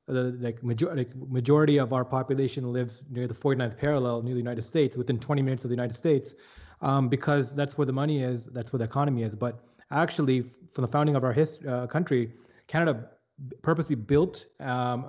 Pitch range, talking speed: 125-150 Hz, 205 wpm